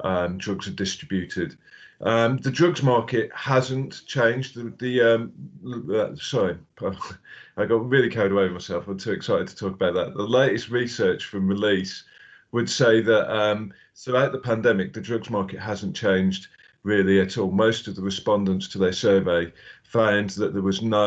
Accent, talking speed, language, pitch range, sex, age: British, 165 wpm, English, 95-110 Hz, male, 40-59